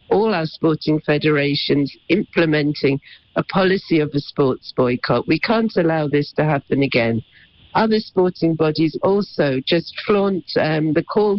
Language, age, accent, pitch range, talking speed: English, 50-69, British, 150-180 Hz, 140 wpm